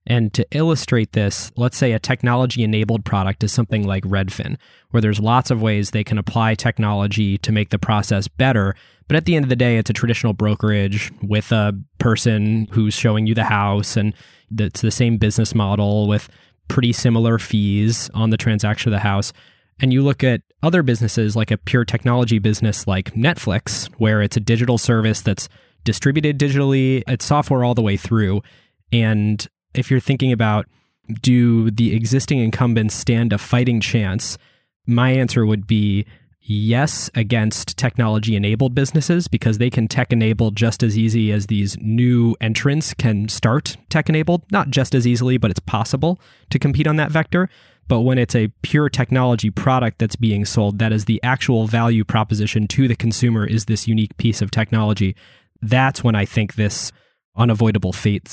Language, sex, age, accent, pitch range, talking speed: English, male, 20-39, American, 105-125 Hz, 175 wpm